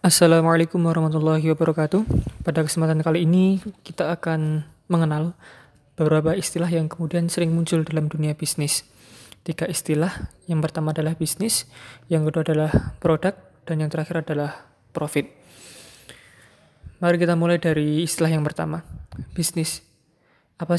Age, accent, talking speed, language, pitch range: 20-39, native, 125 wpm, Indonesian, 155-170 Hz